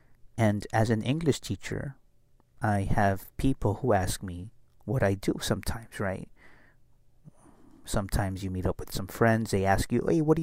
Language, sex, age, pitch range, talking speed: English, male, 30-49, 100-120 Hz, 165 wpm